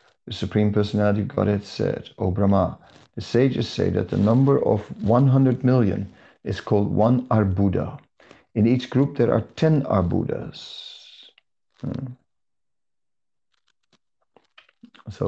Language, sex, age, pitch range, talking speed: English, male, 50-69, 100-120 Hz, 115 wpm